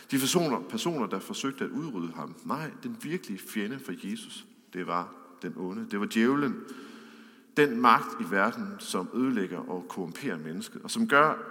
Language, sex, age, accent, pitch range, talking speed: English, male, 50-69, Danish, 155-240 Hz, 170 wpm